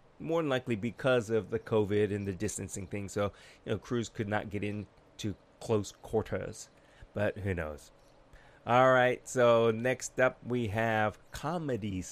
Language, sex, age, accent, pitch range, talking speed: English, male, 30-49, American, 105-145 Hz, 165 wpm